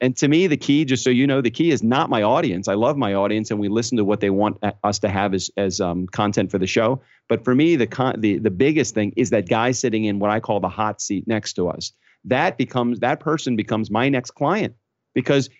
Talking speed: 255 wpm